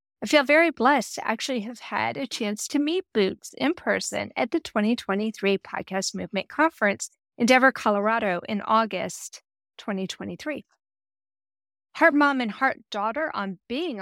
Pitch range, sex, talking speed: 200-275 Hz, female, 140 wpm